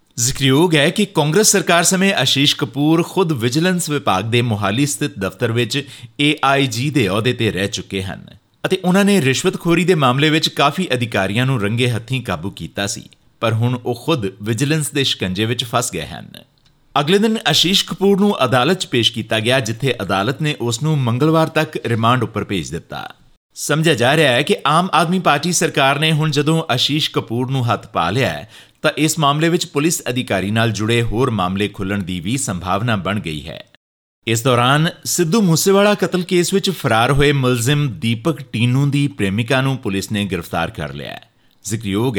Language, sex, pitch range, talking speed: Punjabi, male, 115-155 Hz, 165 wpm